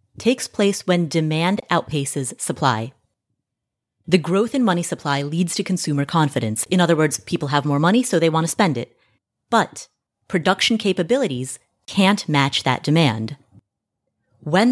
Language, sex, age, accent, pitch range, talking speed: English, female, 30-49, American, 140-200 Hz, 145 wpm